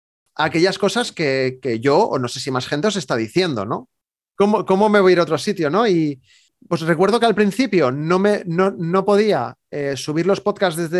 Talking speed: 225 wpm